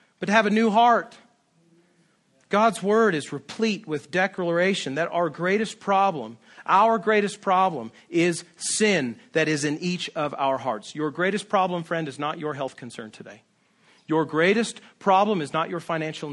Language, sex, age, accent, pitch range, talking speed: English, male, 40-59, American, 150-205 Hz, 165 wpm